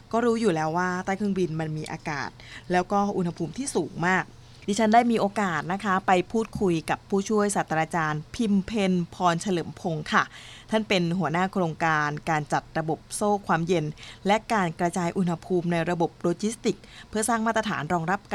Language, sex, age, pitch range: Thai, female, 20-39, 165-205 Hz